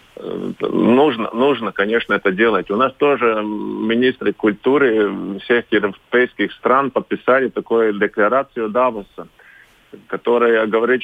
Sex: male